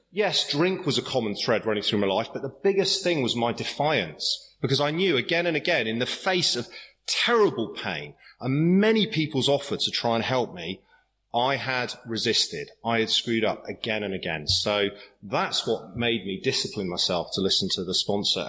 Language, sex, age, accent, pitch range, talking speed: English, male, 30-49, British, 105-135 Hz, 195 wpm